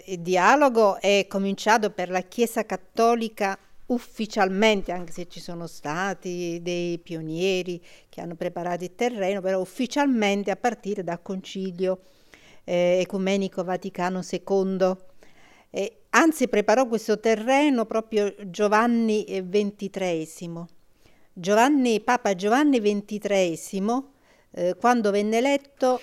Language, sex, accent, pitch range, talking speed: Italian, female, native, 190-230 Hz, 105 wpm